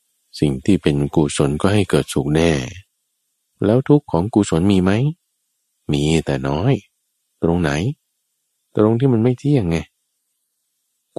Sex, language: male, Thai